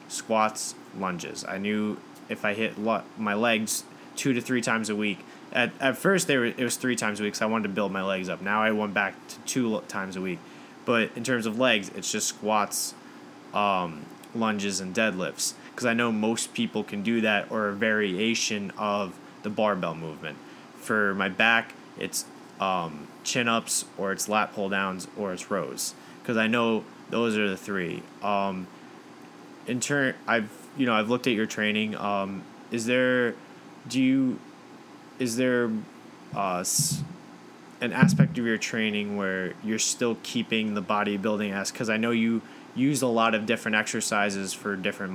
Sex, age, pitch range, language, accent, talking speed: male, 20-39, 100-115 Hz, English, American, 175 wpm